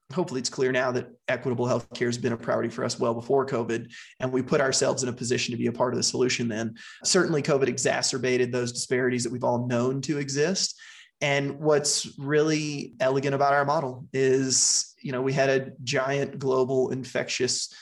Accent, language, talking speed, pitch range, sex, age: American, English, 195 wpm, 125-140 Hz, male, 30-49